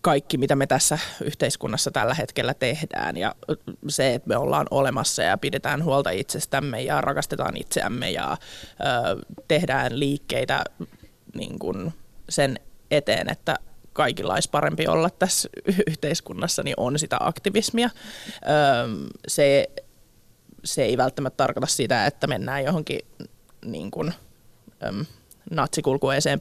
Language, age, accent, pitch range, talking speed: Finnish, 20-39, native, 140-180 Hz, 105 wpm